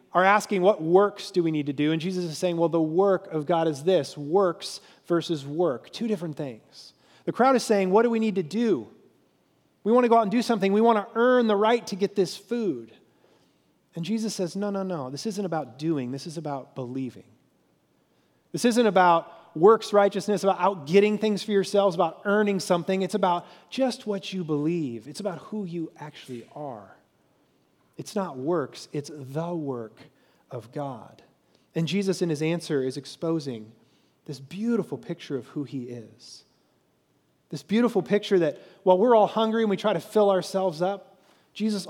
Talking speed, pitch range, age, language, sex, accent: 190 wpm, 155-205 Hz, 30-49, English, male, American